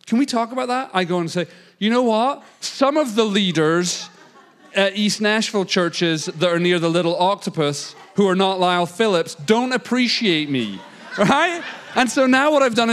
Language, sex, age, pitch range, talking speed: English, male, 40-59, 140-215 Hz, 190 wpm